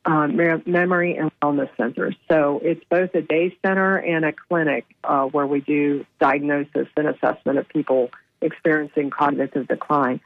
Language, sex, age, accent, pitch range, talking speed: English, female, 50-69, American, 145-170 Hz, 145 wpm